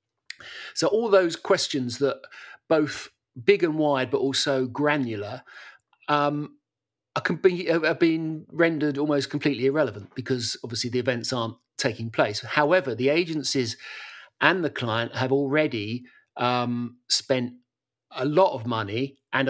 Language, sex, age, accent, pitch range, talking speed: English, male, 40-59, British, 125-145 Hz, 130 wpm